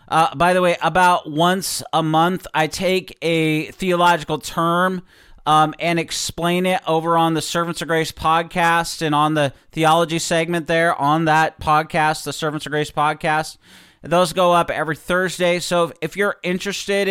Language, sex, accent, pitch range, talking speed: English, male, American, 145-180 Hz, 165 wpm